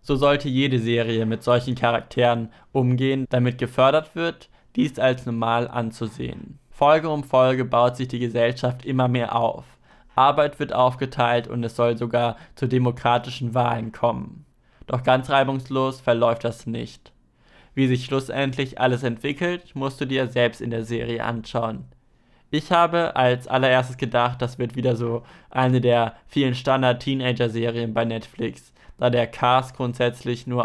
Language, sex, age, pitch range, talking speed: German, male, 20-39, 120-135 Hz, 150 wpm